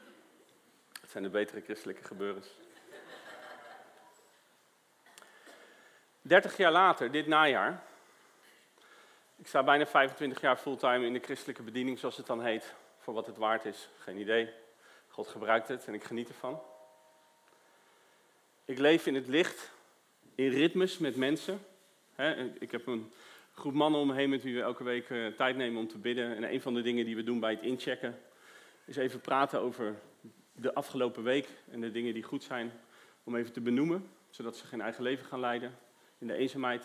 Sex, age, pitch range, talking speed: male, 40-59, 120-155 Hz, 170 wpm